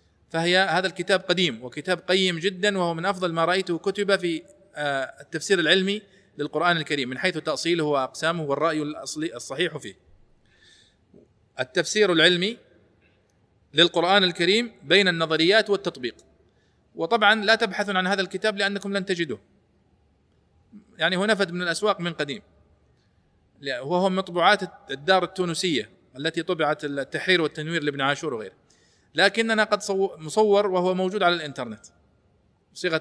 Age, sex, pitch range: 40-59, male, 145-200 Hz